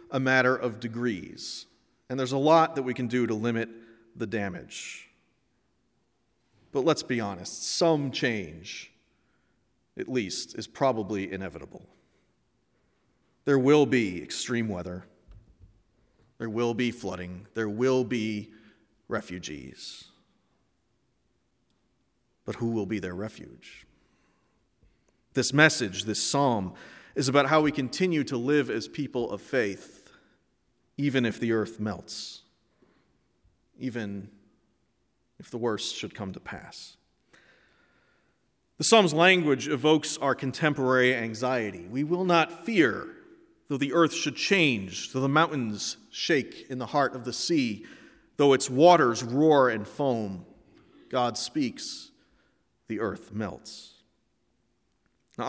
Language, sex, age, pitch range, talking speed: English, male, 40-59, 110-145 Hz, 120 wpm